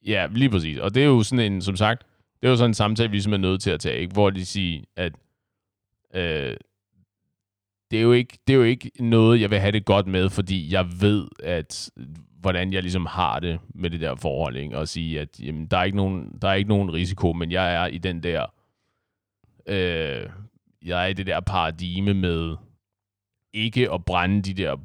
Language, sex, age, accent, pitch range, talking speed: Danish, male, 30-49, native, 85-105 Hz, 220 wpm